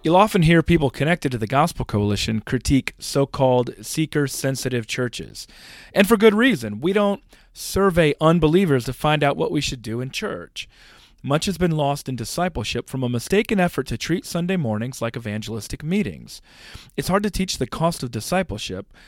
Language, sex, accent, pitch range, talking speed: English, male, American, 115-160 Hz, 175 wpm